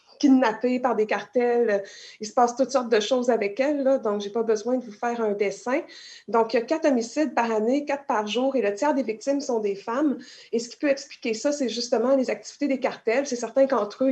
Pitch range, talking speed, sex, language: 215-260 Hz, 250 wpm, female, French